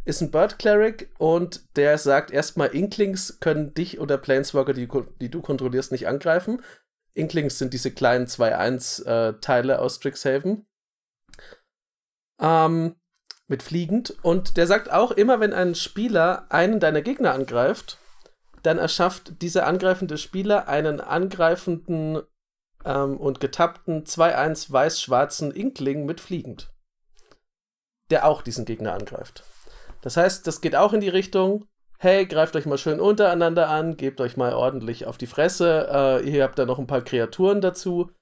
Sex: male